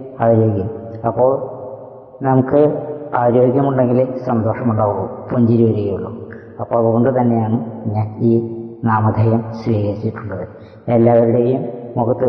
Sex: female